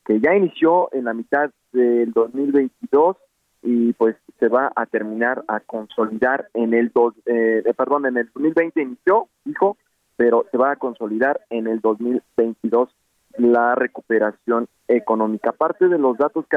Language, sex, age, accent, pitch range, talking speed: Spanish, male, 40-59, Mexican, 120-150 Hz, 150 wpm